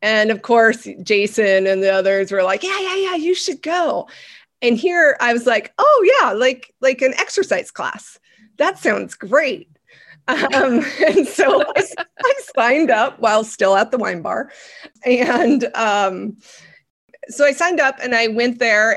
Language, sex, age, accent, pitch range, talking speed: English, female, 30-49, American, 190-255 Hz, 170 wpm